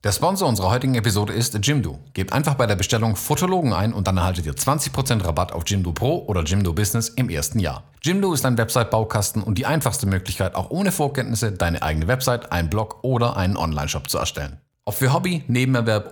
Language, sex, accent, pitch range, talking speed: German, male, German, 95-130 Hz, 200 wpm